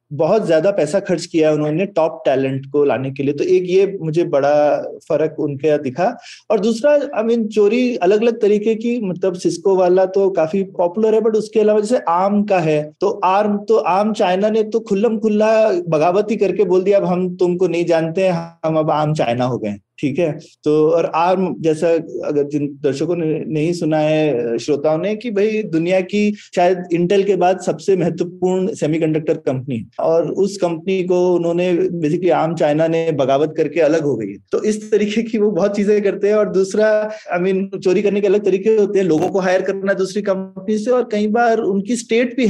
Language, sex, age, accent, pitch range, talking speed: Hindi, male, 30-49, native, 155-205 Hz, 205 wpm